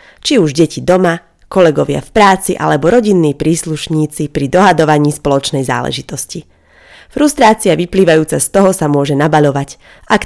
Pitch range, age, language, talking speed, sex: 150-200 Hz, 30-49, Slovak, 130 wpm, female